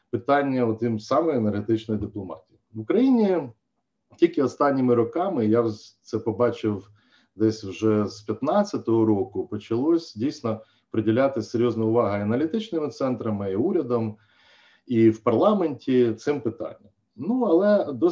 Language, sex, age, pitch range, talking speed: Ukrainian, male, 40-59, 105-125 Hz, 120 wpm